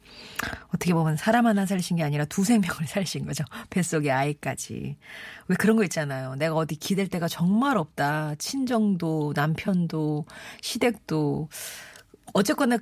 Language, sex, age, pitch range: Korean, female, 40-59, 150-210 Hz